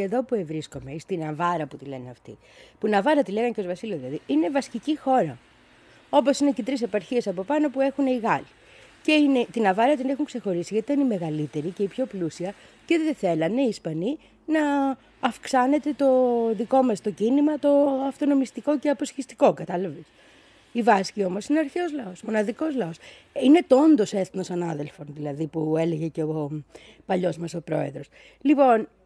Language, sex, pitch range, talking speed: Greek, female, 175-275 Hz, 180 wpm